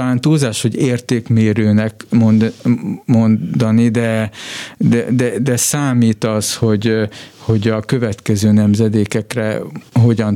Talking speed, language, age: 100 wpm, Hungarian, 50-69